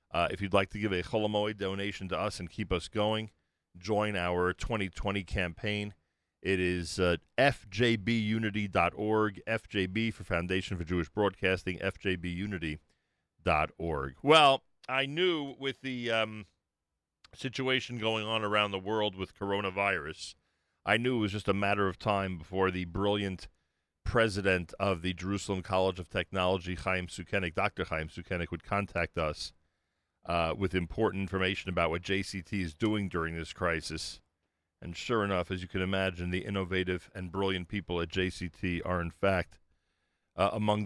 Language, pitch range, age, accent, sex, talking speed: English, 90-105 Hz, 40-59, American, male, 150 wpm